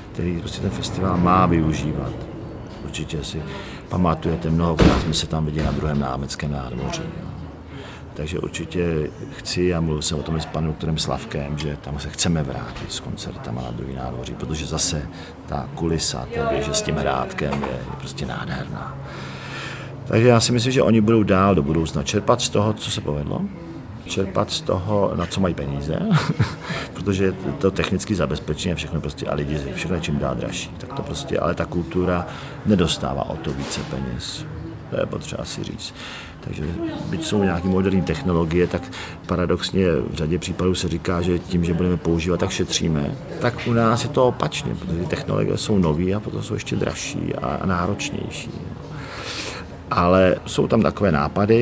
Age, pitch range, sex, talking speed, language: 50-69, 75-95 Hz, male, 170 wpm, Czech